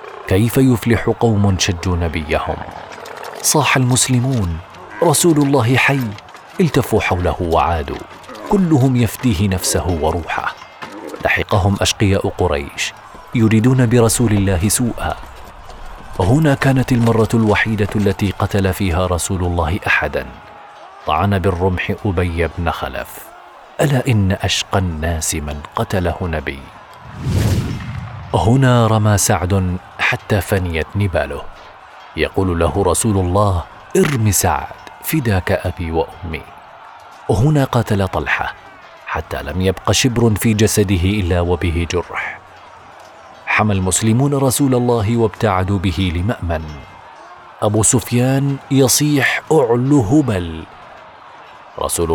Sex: male